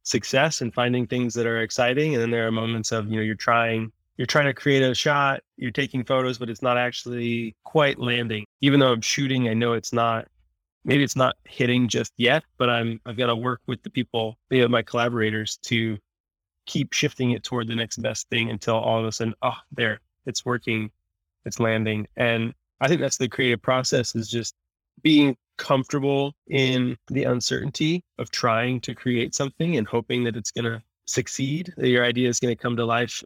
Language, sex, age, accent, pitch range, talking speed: English, male, 20-39, American, 115-130 Hz, 205 wpm